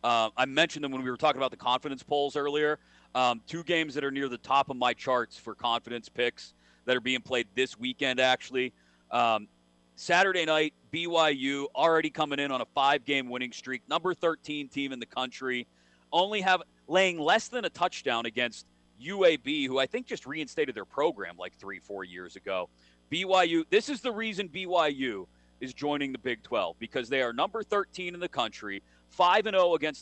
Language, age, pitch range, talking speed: English, 40-59, 120-170 Hz, 190 wpm